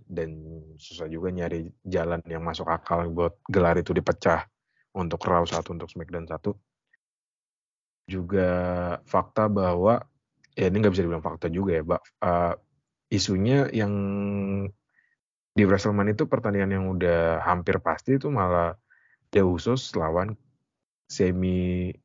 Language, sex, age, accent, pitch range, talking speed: Indonesian, male, 30-49, native, 85-100 Hz, 135 wpm